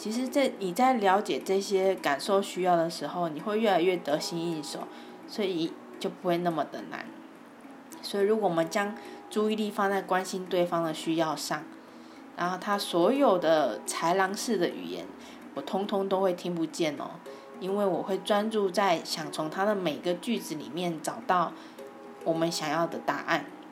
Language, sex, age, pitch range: Chinese, female, 20-39, 165-205 Hz